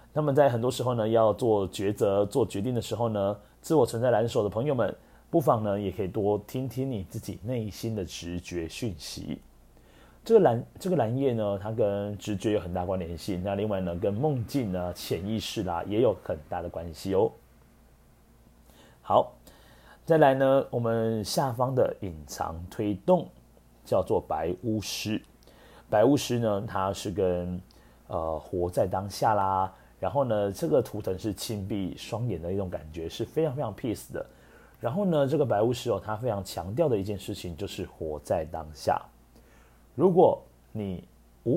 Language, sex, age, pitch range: Chinese, male, 30-49, 90-115 Hz